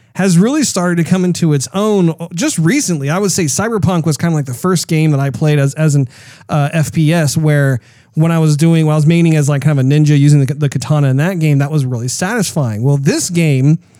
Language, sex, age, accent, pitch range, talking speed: English, male, 30-49, American, 140-170 Hz, 250 wpm